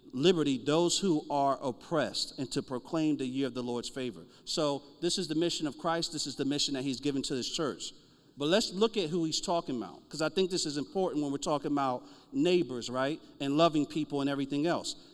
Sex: male